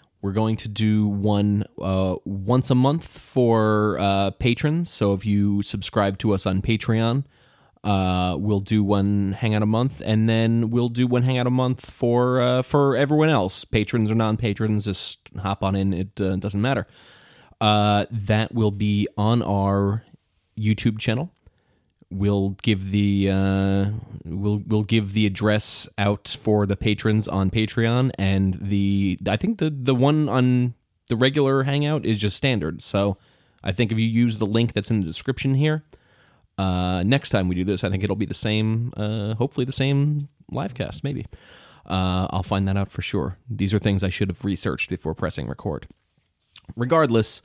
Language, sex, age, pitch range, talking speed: English, male, 20-39, 100-125 Hz, 175 wpm